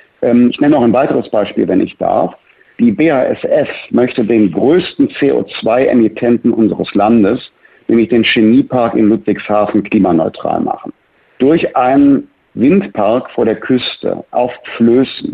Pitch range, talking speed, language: 110-155 Hz, 125 wpm, German